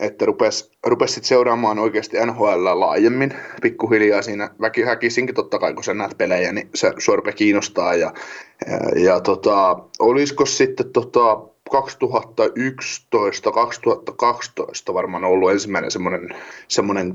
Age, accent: 30-49, native